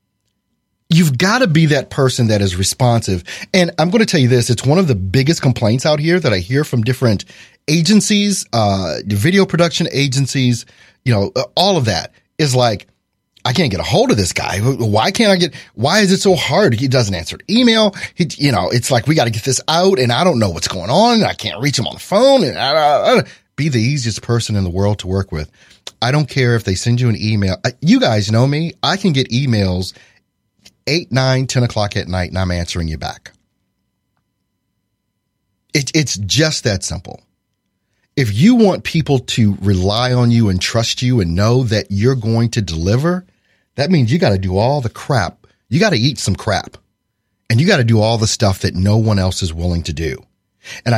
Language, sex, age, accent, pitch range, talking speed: English, male, 30-49, American, 100-155 Hz, 210 wpm